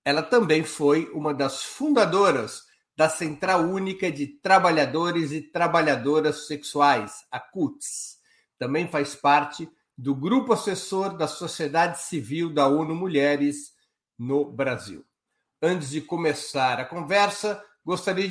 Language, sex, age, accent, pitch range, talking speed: Portuguese, male, 60-79, Brazilian, 145-185 Hz, 120 wpm